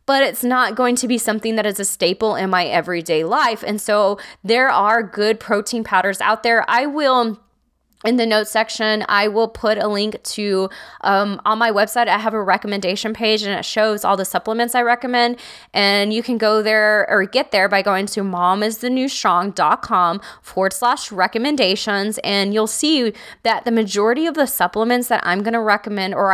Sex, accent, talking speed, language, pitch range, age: female, American, 185 wpm, English, 195-230 Hz, 20-39